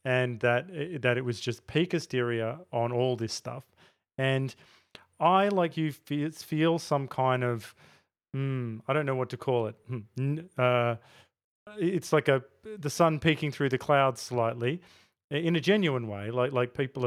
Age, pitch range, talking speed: 30-49, 120-150 Hz, 165 wpm